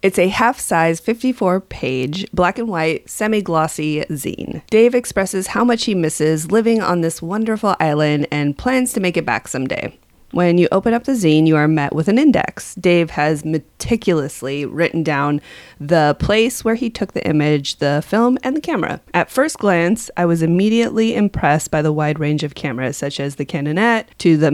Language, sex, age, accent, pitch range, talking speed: English, female, 30-49, American, 155-210 Hz, 180 wpm